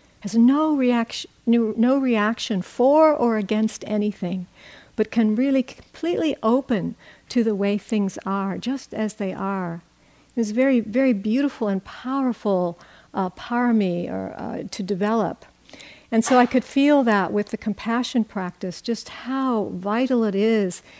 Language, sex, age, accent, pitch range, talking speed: English, female, 60-79, American, 200-245 Hz, 145 wpm